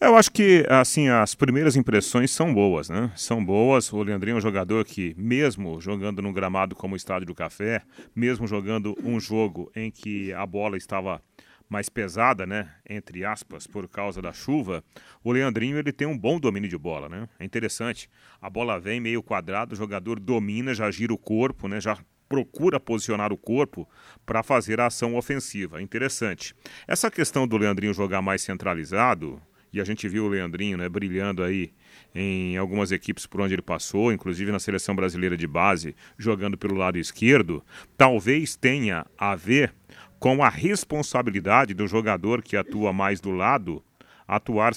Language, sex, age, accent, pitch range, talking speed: Portuguese, male, 40-59, Brazilian, 100-125 Hz, 175 wpm